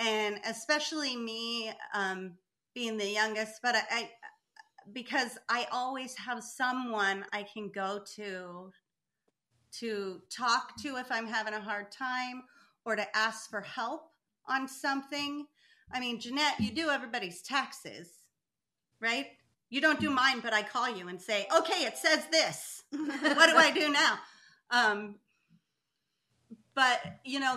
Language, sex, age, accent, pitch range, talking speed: English, female, 40-59, American, 205-275 Hz, 145 wpm